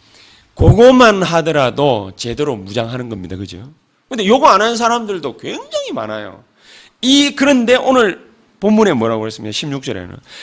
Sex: male